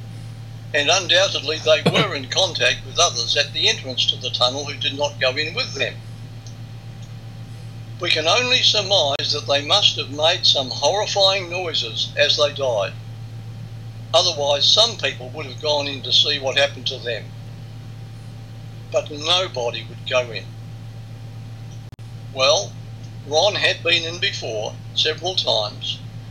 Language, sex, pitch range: English, male, 115-135 Hz